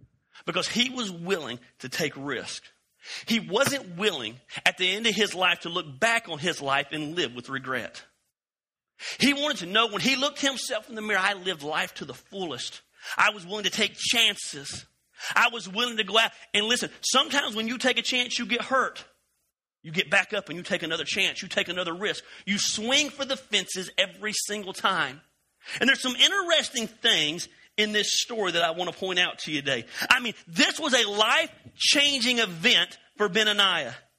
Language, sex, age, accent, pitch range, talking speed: English, male, 40-59, American, 195-270 Hz, 200 wpm